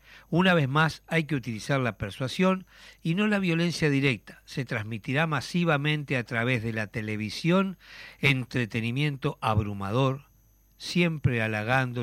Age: 60-79